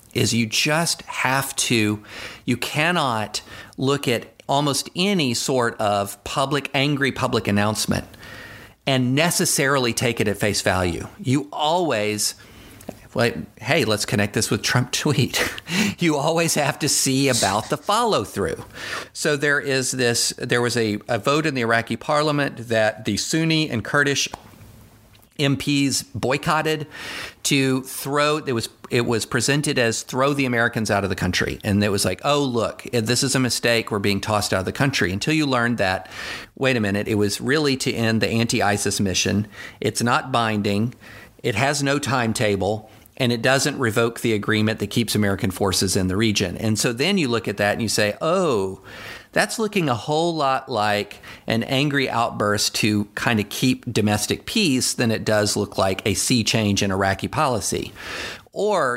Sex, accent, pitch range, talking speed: male, American, 105-135 Hz, 175 wpm